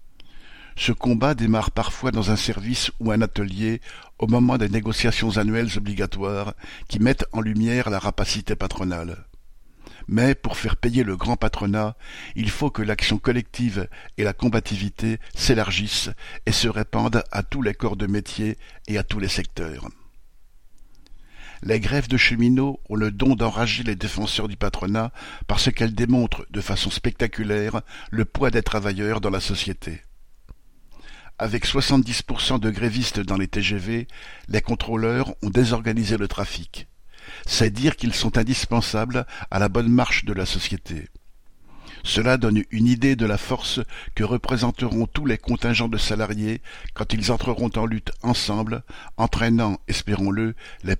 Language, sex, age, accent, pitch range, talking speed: French, male, 60-79, French, 100-120 Hz, 150 wpm